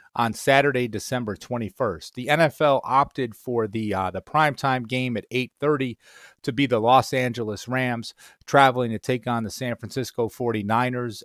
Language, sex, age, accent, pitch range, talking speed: English, male, 30-49, American, 110-130 Hz, 155 wpm